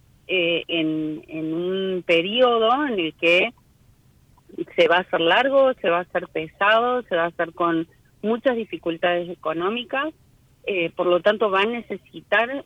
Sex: female